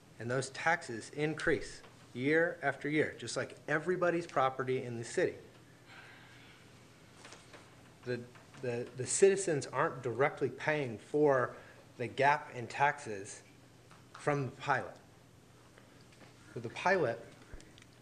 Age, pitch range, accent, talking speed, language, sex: 30-49, 125-150 Hz, American, 105 wpm, English, male